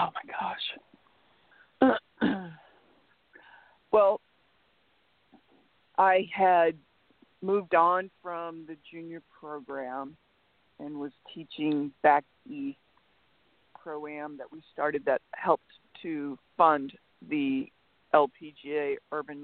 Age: 40-59